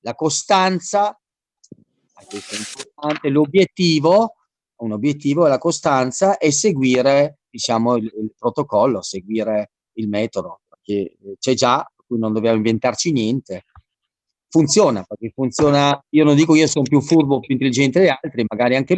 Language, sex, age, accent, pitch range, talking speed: Italian, male, 40-59, native, 110-150 Hz, 135 wpm